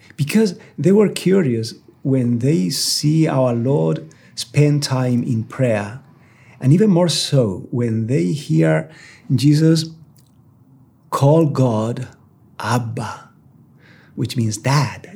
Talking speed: 105 wpm